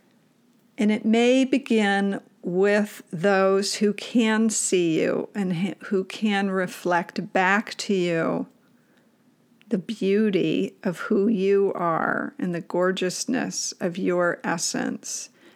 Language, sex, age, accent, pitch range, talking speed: English, female, 50-69, American, 185-225 Hz, 110 wpm